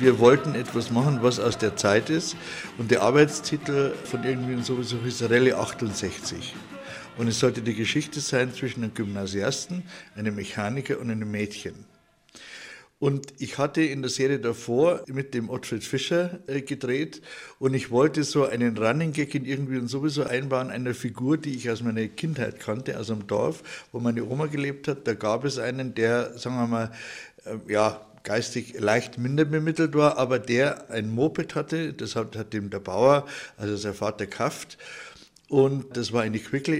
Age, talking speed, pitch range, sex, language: 60-79, 170 wpm, 115-140 Hz, male, German